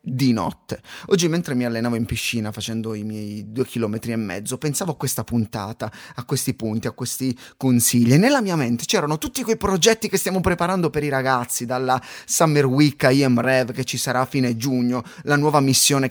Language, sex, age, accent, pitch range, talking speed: Italian, male, 20-39, native, 120-185 Hz, 200 wpm